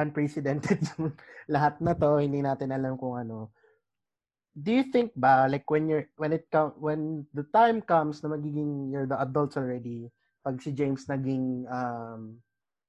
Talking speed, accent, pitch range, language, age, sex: 160 wpm, native, 125-150 Hz, Filipino, 20-39, male